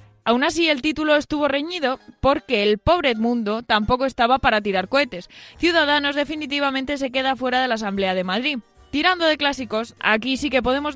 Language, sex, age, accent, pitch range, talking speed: Spanish, female, 20-39, Spanish, 230-285 Hz, 175 wpm